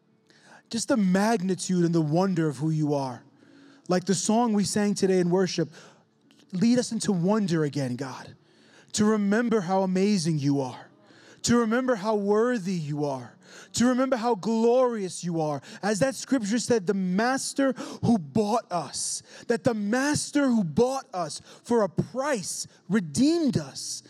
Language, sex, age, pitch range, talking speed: English, male, 20-39, 185-245 Hz, 155 wpm